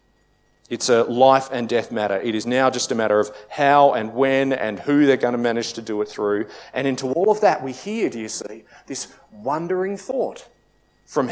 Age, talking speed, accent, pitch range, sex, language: 40-59, 210 wpm, Australian, 115-145 Hz, male, English